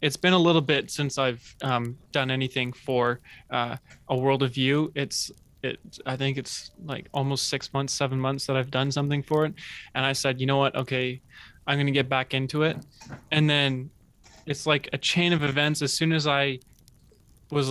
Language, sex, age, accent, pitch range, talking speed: English, male, 20-39, American, 130-150 Hz, 200 wpm